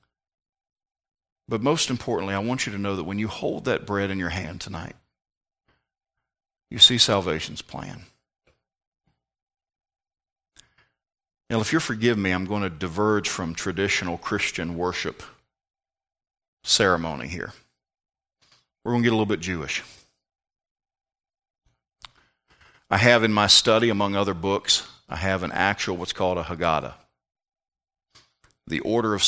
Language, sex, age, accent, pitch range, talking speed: English, male, 40-59, American, 95-115 Hz, 130 wpm